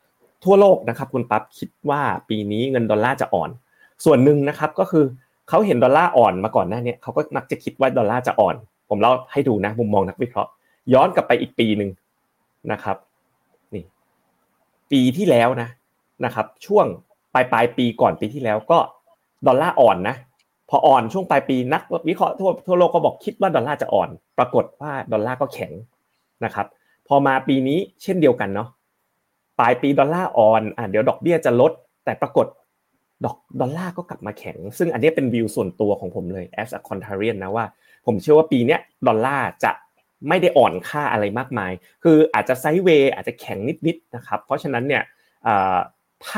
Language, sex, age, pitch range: Thai, male, 30-49, 110-155 Hz